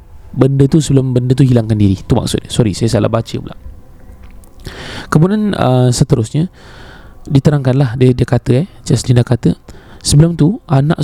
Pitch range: 120-150 Hz